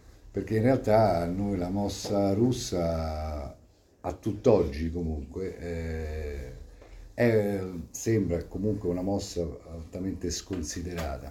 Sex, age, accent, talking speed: male, 50-69, native, 100 wpm